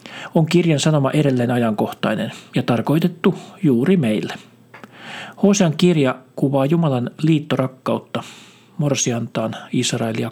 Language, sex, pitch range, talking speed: Finnish, male, 125-170 Hz, 95 wpm